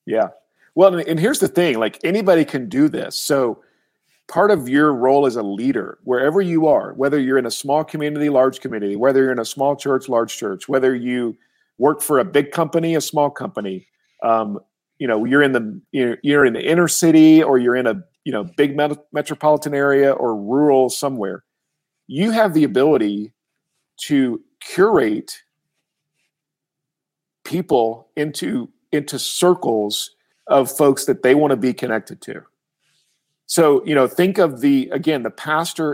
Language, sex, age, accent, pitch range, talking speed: English, male, 50-69, American, 130-160 Hz, 165 wpm